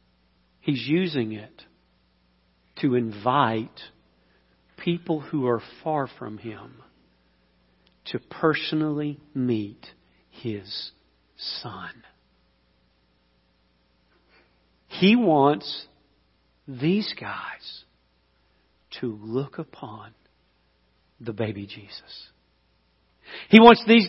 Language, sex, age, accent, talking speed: English, male, 50-69, American, 70 wpm